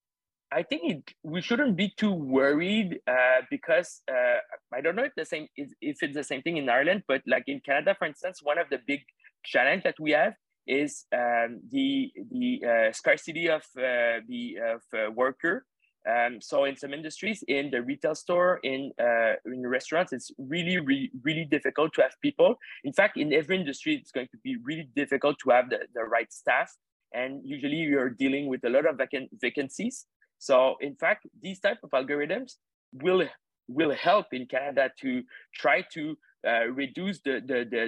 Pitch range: 130-200 Hz